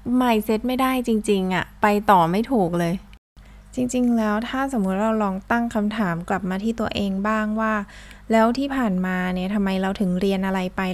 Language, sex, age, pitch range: Thai, female, 20-39, 180-220 Hz